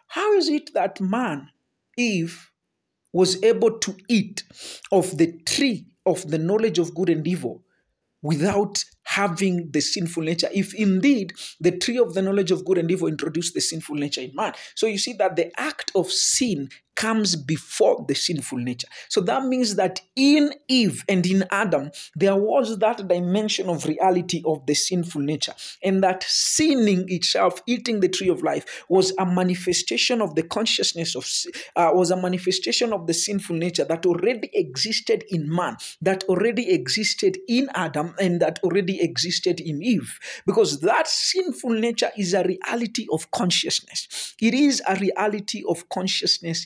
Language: English